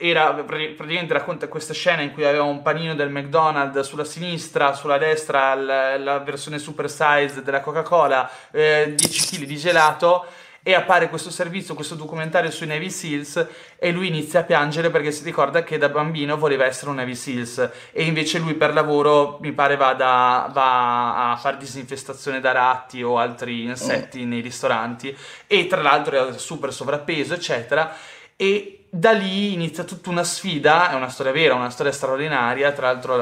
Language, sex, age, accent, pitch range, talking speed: Italian, male, 20-39, native, 130-165 Hz, 175 wpm